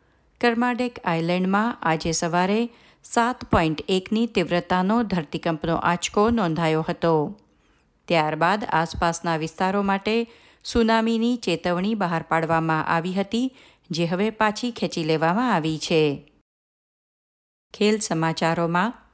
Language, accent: Gujarati, native